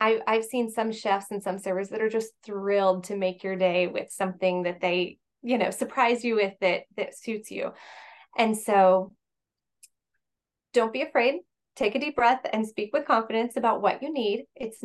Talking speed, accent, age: 185 wpm, American, 20-39